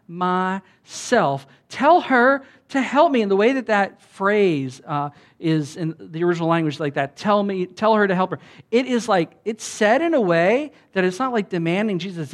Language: English